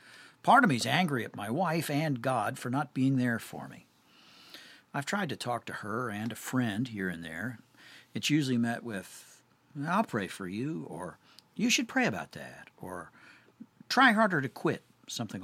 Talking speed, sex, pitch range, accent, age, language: 185 wpm, male, 100-140 Hz, American, 60-79, English